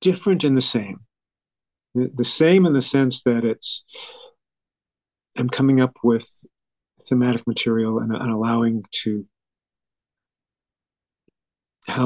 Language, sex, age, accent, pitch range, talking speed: English, male, 50-69, American, 110-135 Hz, 110 wpm